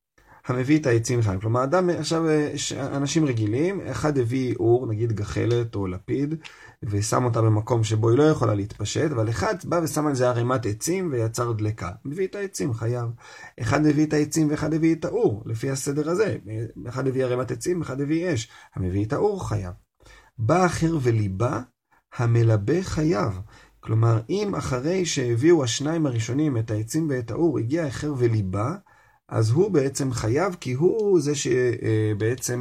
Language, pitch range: Hebrew, 110-150 Hz